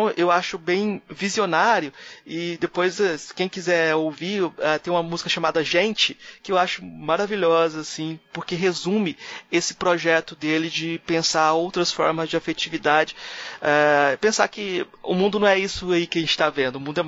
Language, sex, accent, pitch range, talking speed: Portuguese, male, Brazilian, 155-180 Hz, 160 wpm